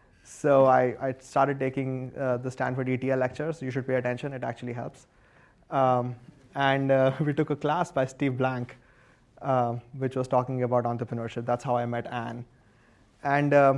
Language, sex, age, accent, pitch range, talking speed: English, male, 20-39, Indian, 125-140 Hz, 170 wpm